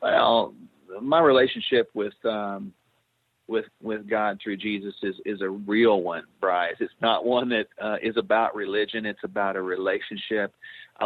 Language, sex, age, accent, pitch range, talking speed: English, male, 40-59, American, 110-155 Hz, 155 wpm